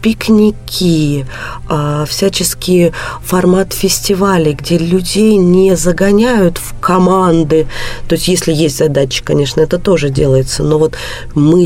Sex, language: female, Russian